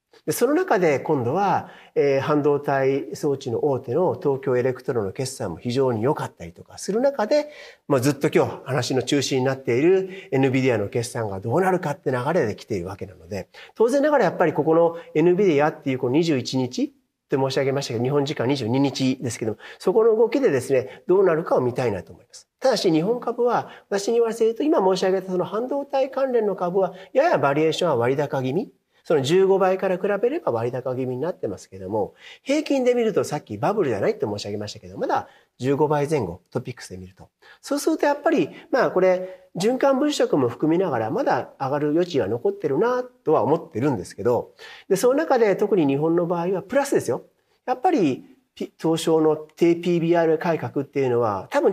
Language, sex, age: Japanese, male, 40-59